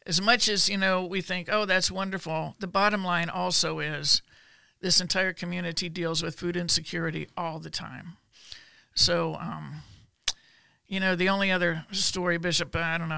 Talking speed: 170 wpm